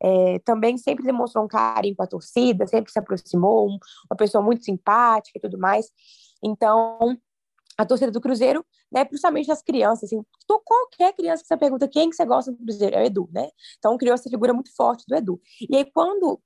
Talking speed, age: 195 wpm, 20-39